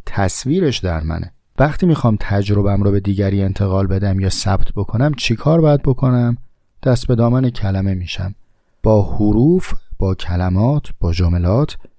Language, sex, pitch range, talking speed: Persian, male, 90-120 Hz, 140 wpm